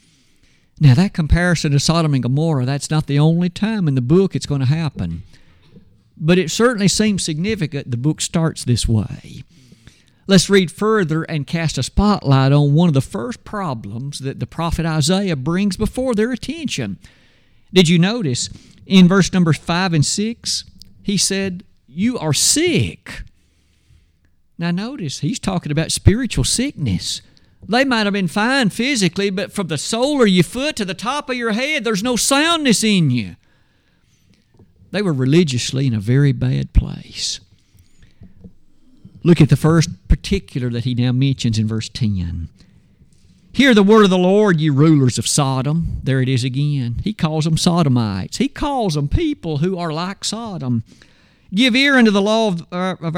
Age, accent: 50-69, American